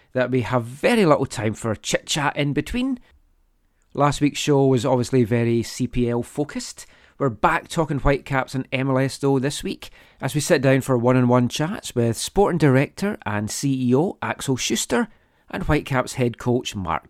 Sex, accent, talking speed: male, British, 160 wpm